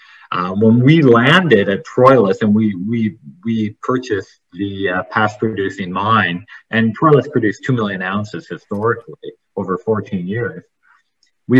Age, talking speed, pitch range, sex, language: 40-59, 140 wpm, 95-125 Hz, male, English